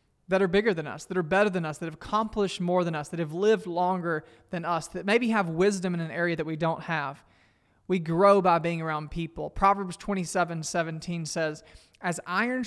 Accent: American